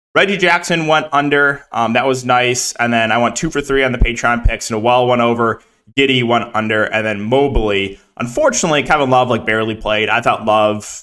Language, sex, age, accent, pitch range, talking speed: English, male, 20-39, American, 120-150 Hz, 220 wpm